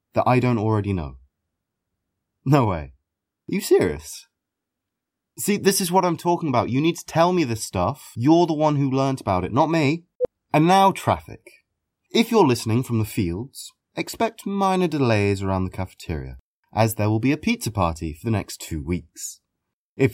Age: 30-49